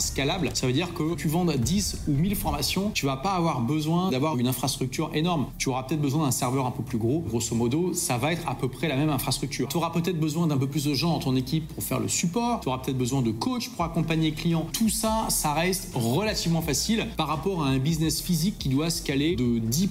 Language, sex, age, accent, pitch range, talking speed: French, male, 30-49, French, 135-175 Hz, 255 wpm